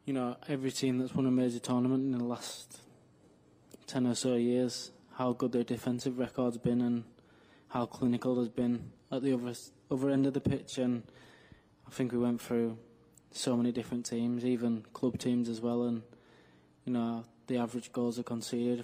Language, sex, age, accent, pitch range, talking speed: English, male, 20-39, British, 115-125 Hz, 185 wpm